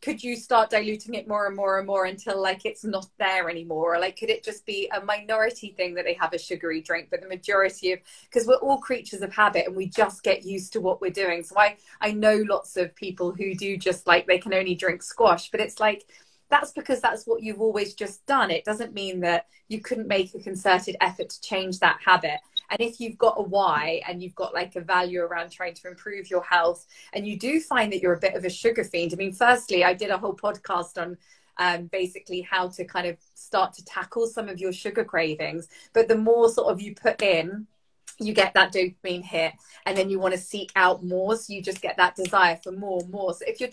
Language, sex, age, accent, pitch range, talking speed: English, female, 20-39, British, 180-220 Hz, 245 wpm